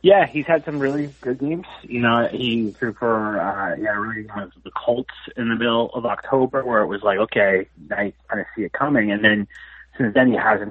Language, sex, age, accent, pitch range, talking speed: English, male, 30-49, American, 100-130 Hz, 235 wpm